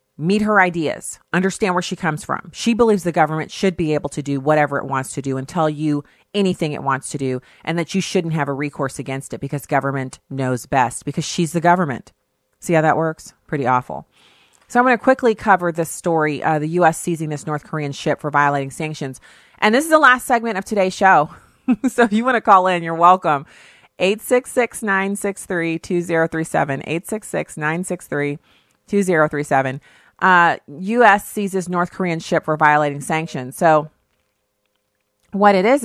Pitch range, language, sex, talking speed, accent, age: 150-190 Hz, English, female, 175 wpm, American, 30-49